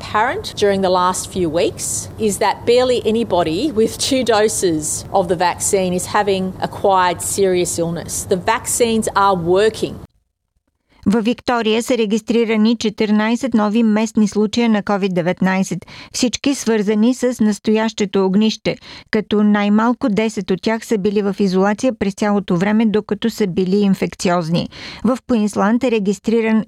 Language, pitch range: Bulgarian, 195-230 Hz